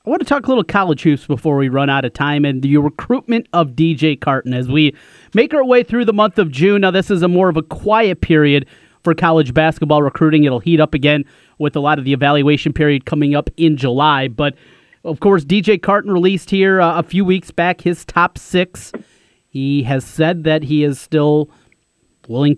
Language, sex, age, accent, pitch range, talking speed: English, male, 30-49, American, 150-180 Hz, 215 wpm